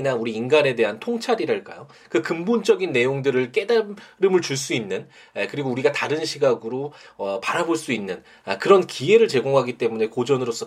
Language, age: Korean, 20-39